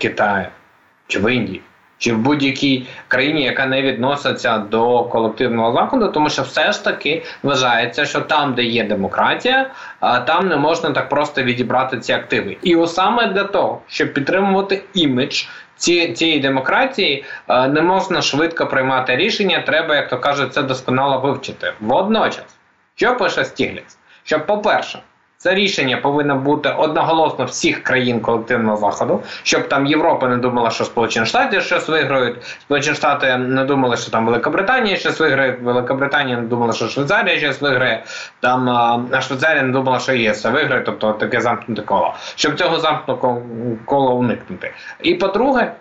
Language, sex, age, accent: Ukrainian, male, 20-39, native